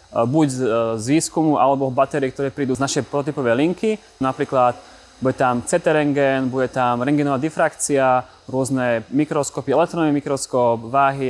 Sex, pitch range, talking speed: male, 130-155 Hz, 125 wpm